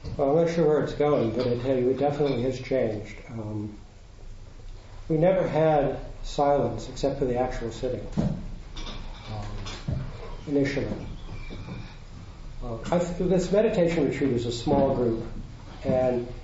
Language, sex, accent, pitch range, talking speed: English, male, American, 115-145 Hz, 130 wpm